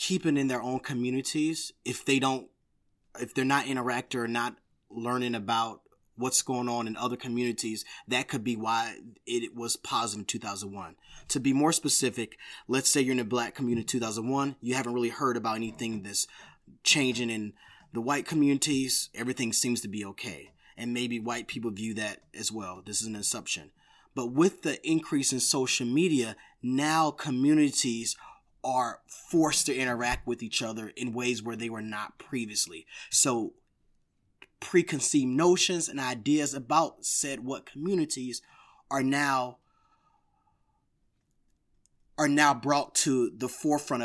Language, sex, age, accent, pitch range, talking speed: English, male, 30-49, American, 120-145 Hz, 155 wpm